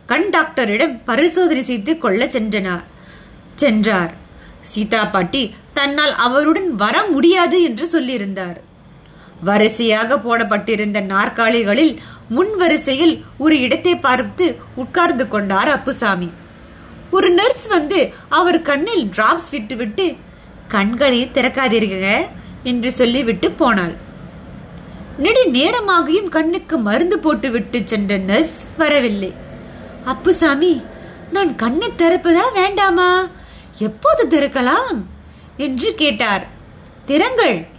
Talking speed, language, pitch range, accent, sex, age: 65 wpm, Tamil, 220-345 Hz, native, female, 20-39